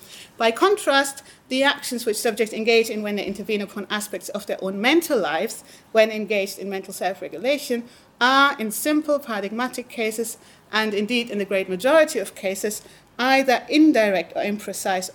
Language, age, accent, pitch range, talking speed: English, 40-59, British, 190-240 Hz, 160 wpm